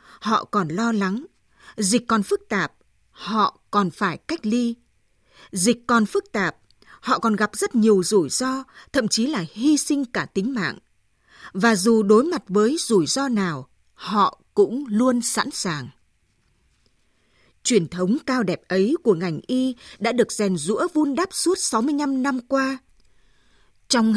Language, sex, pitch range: Vietnamese, female, 200-265 Hz